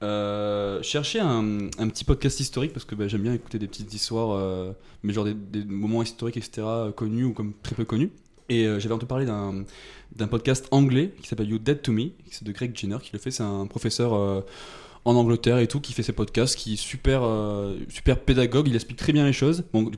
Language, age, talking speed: French, 20-39, 235 wpm